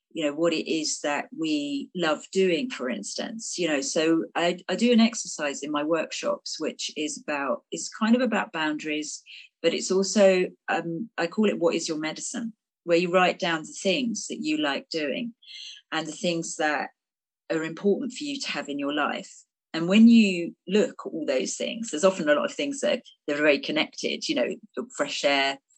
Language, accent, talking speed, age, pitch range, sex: English, British, 205 wpm, 40-59, 155-255 Hz, female